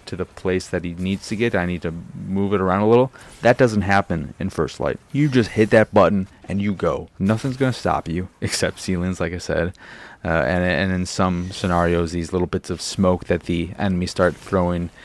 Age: 30-49